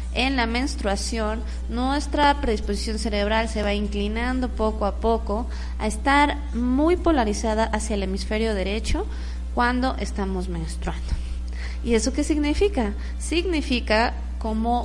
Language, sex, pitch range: Spanish, female, 185-260 Hz